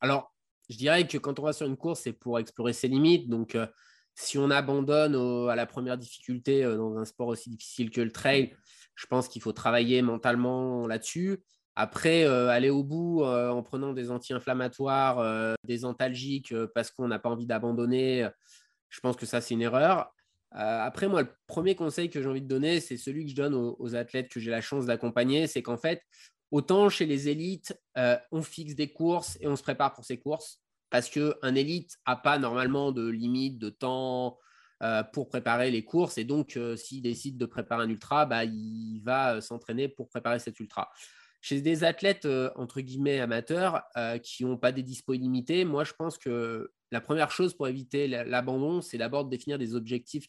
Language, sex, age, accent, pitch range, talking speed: French, male, 20-39, French, 120-145 Hz, 210 wpm